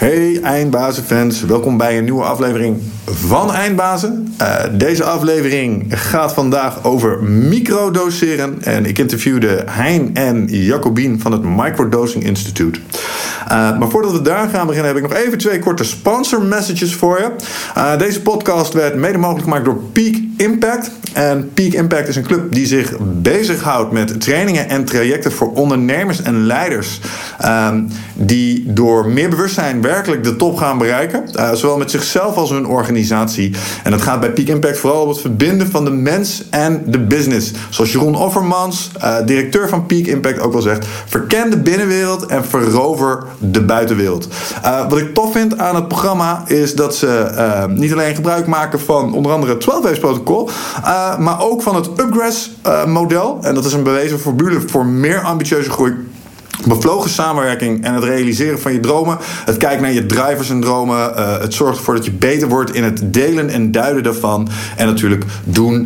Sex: male